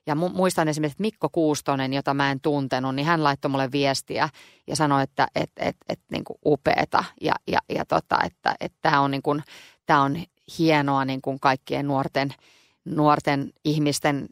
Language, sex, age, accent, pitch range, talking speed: Finnish, female, 30-49, native, 140-155 Hz, 170 wpm